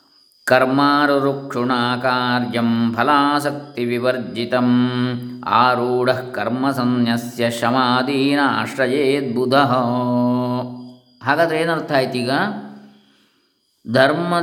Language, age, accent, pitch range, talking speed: English, 20-39, Indian, 120-155 Hz, 60 wpm